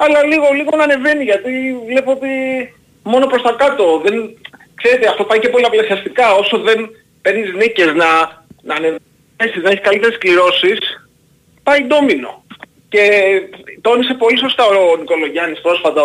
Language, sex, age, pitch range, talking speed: Greek, male, 30-49, 170-280 Hz, 140 wpm